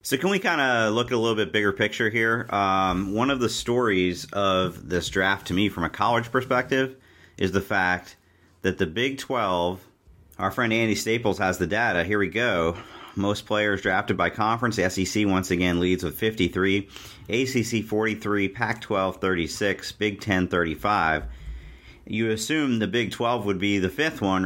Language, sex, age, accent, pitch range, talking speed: English, male, 40-59, American, 90-110 Hz, 175 wpm